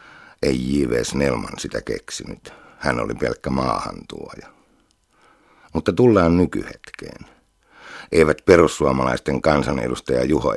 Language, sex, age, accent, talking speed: Finnish, male, 60-79, native, 85 wpm